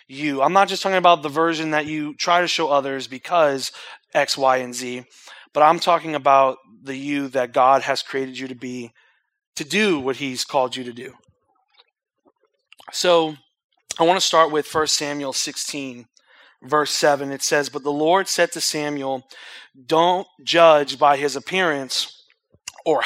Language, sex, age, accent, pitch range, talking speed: English, male, 30-49, American, 140-175 Hz, 170 wpm